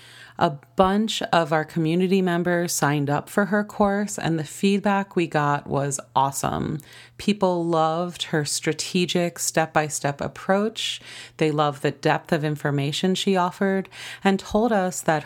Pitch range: 145-185 Hz